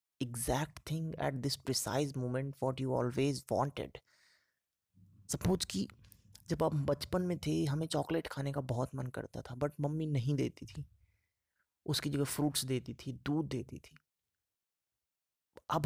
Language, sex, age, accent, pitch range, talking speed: English, male, 20-39, Indian, 120-155 Hz, 145 wpm